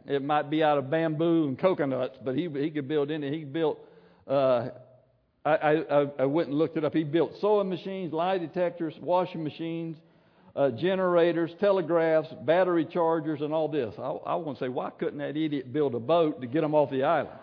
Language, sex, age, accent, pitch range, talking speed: English, male, 60-79, American, 125-170 Hz, 205 wpm